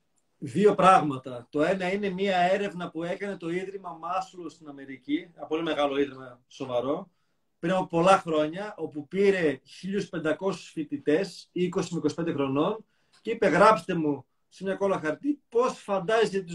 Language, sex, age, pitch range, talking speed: Greek, male, 30-49, 155-215 Hz, 150 wpm